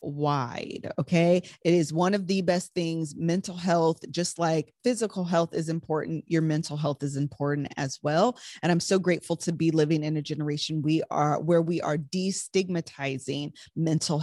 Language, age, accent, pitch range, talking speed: English, 20-39, American, 155-195 Hz, 175 wpm